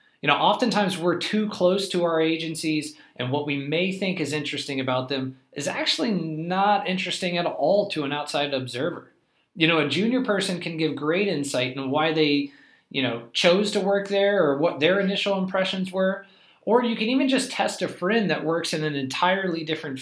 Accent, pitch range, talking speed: American, 140-190 Hz, 200 wpm